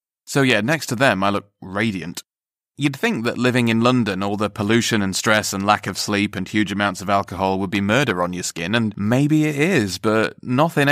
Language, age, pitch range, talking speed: English, 30-49, 100-135 Hz, 220 wpm